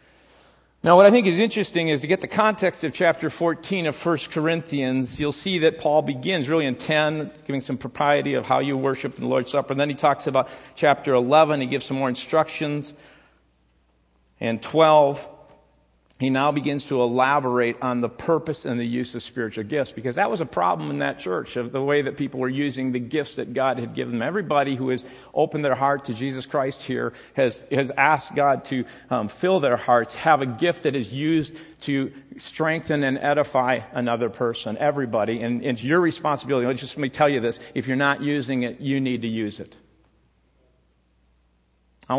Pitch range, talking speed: 125-155 Hz, 200 wpm